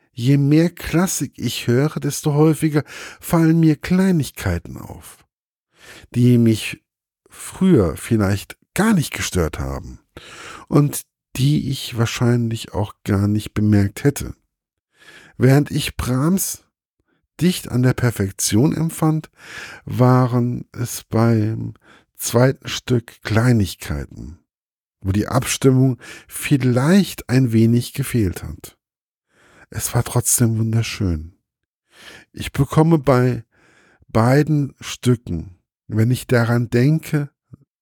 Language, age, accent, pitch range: German, 50-69, German, 105-140 Hz